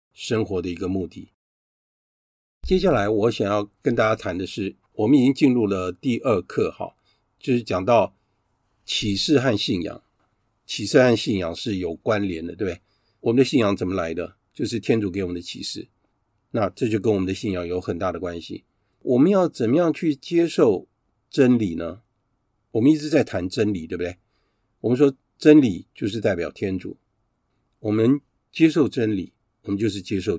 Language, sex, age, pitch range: Chinese, male, 50-69, 95-135 Hz